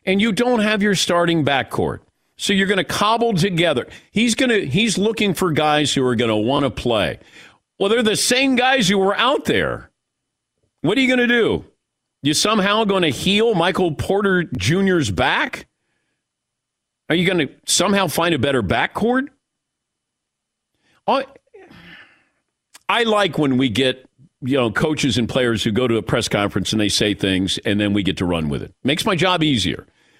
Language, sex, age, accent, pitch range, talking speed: English, male, 50-69, American, 135-205 Hz, 180 wpm